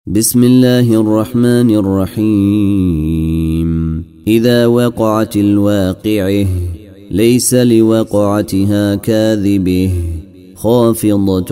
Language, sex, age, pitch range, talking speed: Arabic, male, 30-49, 90-110 Hz, 55 wpm